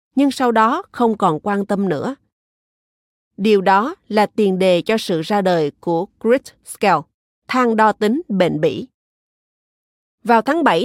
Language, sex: Vietnamese, female